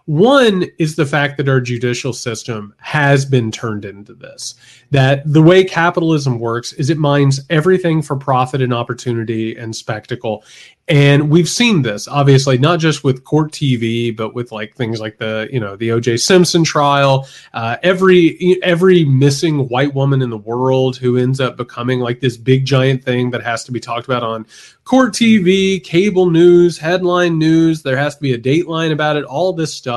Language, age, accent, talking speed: English, 30-49, American, 185 wpm